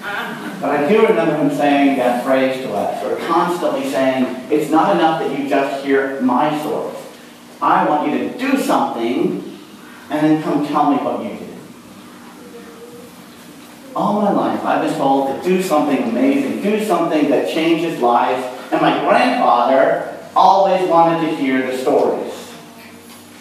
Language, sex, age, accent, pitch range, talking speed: English, male, 40-59, American, 125-175 Hz, 155 wpm